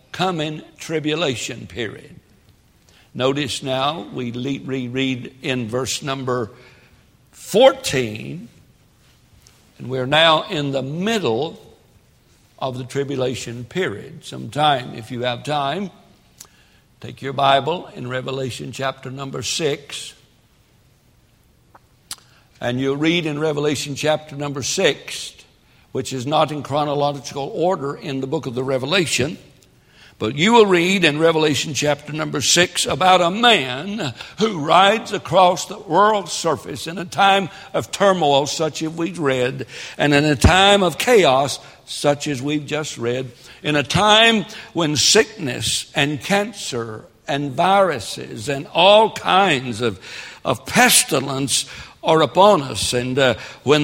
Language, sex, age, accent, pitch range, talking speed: English, male, 60-79, American, 130-170 Hz, 130 wpm